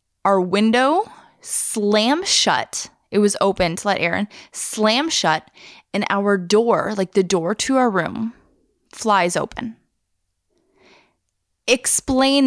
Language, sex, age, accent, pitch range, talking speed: English, female, 20-39, American, 185-240 Hz, 115 wpm